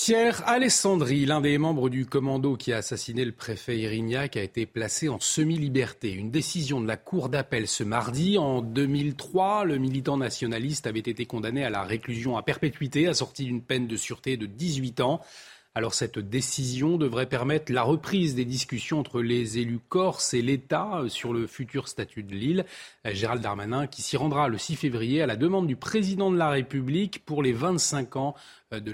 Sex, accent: male, French